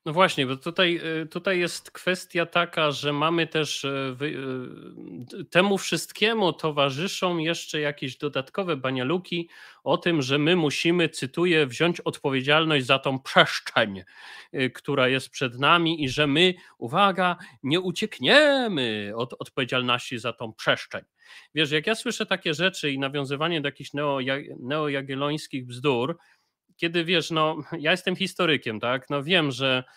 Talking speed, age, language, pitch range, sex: 130 wpm, 30-49, Polish, 135-170 Hz, male